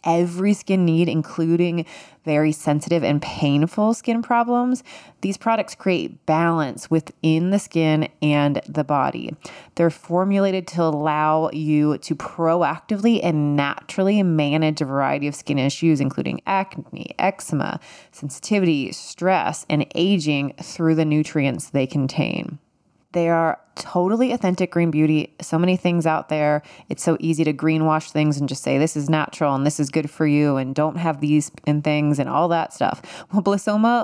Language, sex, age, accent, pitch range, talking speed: English, female, 20-39, American, 150-180 Hz, 155 wpm